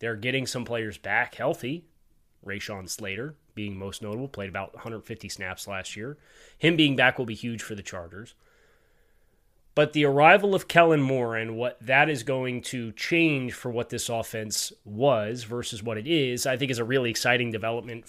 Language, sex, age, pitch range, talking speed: English, male, 20-39, 115-140 Hz, 180 wpm